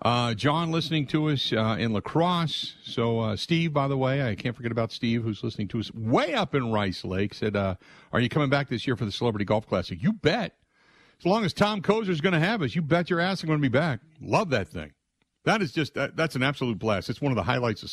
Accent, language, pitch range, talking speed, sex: American, English, 110-150 Hz, 265 wpm, male